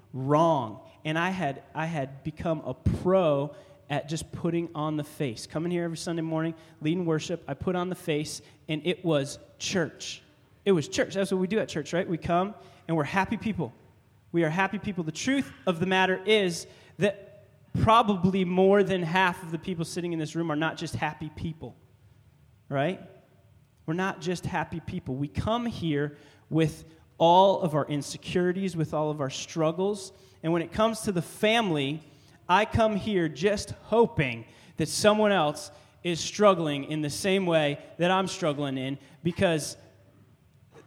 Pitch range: 140-185 Hz